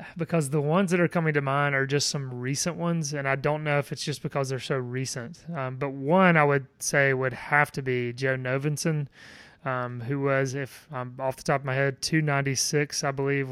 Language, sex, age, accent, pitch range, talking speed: English, male, 30-49, American, 135-155 Hz, 220 wpm